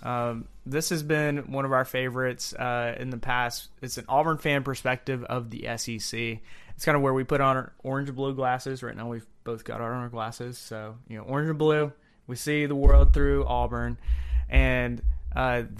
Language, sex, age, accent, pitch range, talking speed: English, male, 20-39, American, 120-140 Hz, 205 wpm